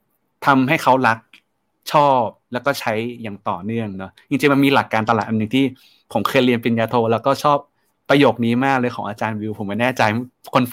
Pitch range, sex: 105-140 Hz, male